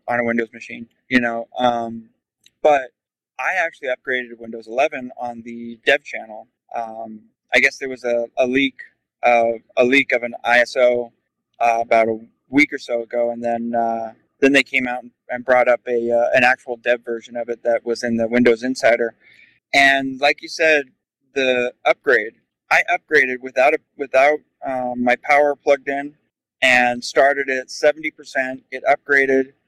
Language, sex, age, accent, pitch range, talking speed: English, male, 20-39, American, 120-140 Hz, 170 wpm